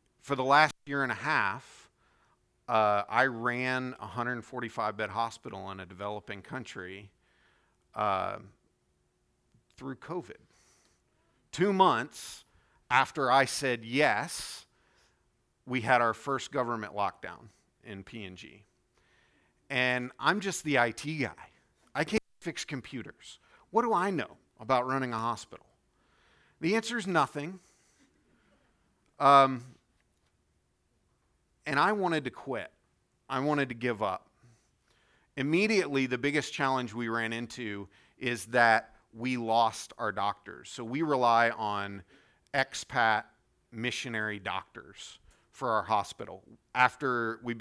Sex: male